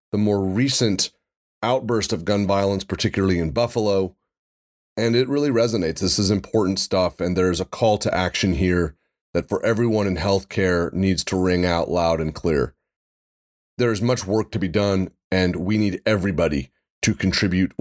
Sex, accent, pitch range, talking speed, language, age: male, American, 95-115 Hz, 170 wpm, English, 30-49